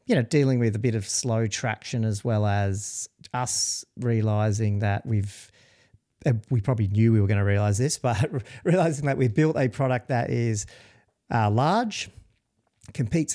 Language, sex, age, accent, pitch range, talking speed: English, male, 40-59, Australian, 105-125 Hz, 165 wpm